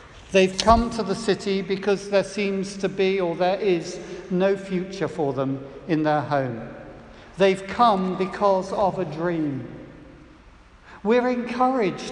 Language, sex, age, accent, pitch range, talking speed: English, male, 60-79, British, 175-225 Hz, 140 wpm